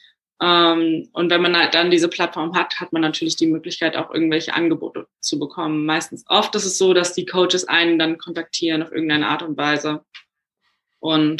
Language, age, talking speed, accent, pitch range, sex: German, 20-39, 190 wpm, German, 165-200 Hz, female